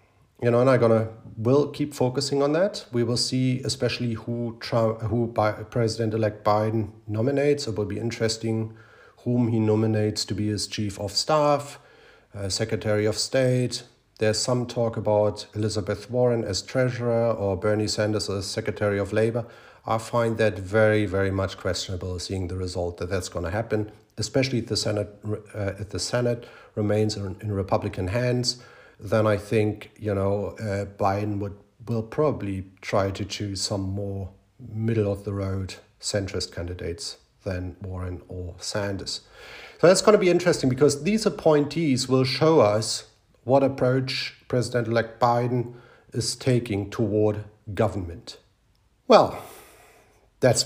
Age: 40-59